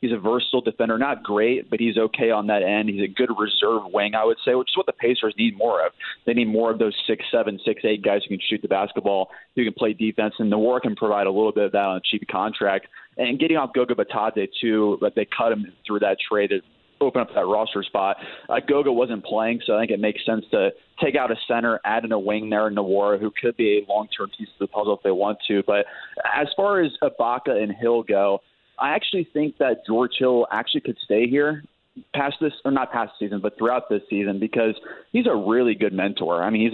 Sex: male